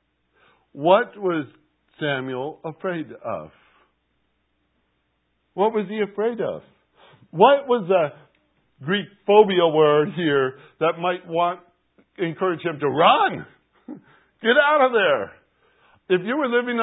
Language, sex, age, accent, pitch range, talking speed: English, male, 60-79, American, 130-195 Hz, 115 wpm